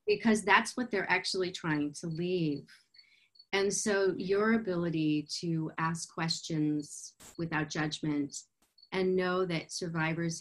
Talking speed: 120 wpm